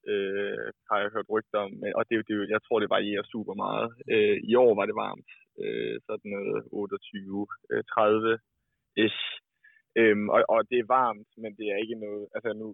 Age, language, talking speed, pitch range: 20-39, Danish, 180 wpm, 105-145 Hz